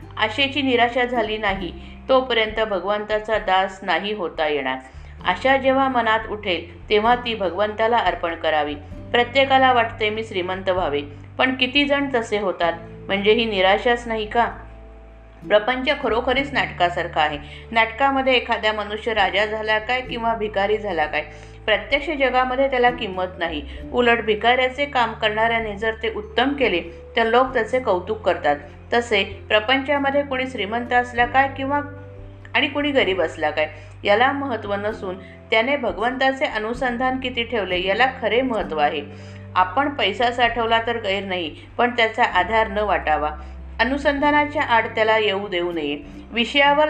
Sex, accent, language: female, native, Marathi